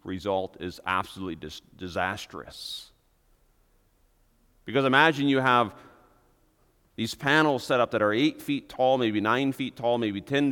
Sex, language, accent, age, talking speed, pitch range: male, English, American, 40-59, 130 wpm, 105-135 Hz